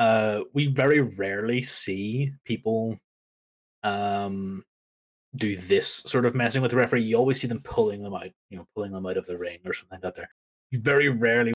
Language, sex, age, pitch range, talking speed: English, male, 20-39, 100-135 Hz, 195 wpm